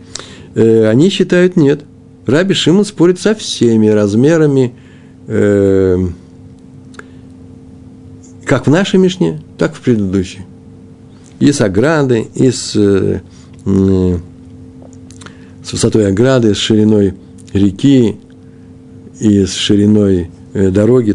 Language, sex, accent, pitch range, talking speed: Russian, male, native, 90-125 Hz, 100 wpm